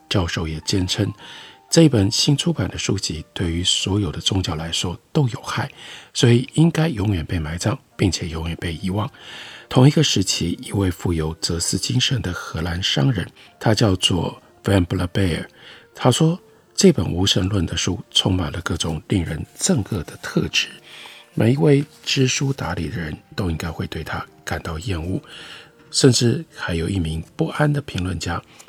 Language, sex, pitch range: Chinese, male, 85-130 Hz